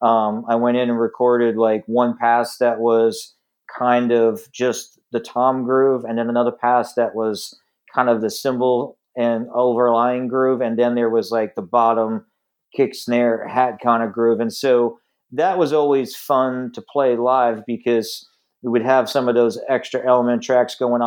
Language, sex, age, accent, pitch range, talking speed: English, male, 40-59, American, 120-135 Hz, 180 wpm